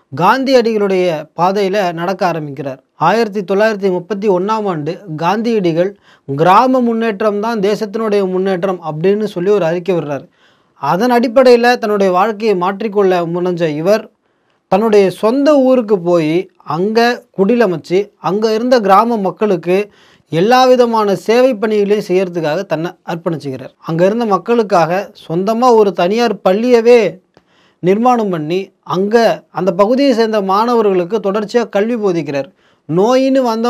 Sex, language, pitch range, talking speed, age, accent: male, Tamil, 180-230 Hz, 105 wpm, 30-49, native